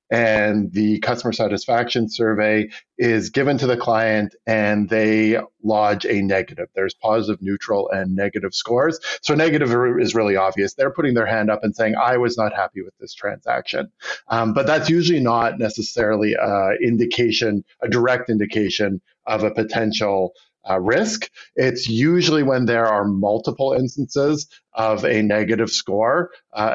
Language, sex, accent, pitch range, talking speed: English, male, American, 105-125 Hz, 155 wpm